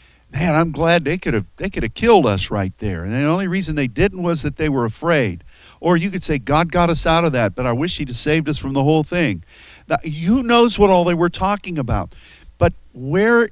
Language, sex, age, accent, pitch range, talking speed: English, male, 50-69, American, 105-165 Hz, 245 wpm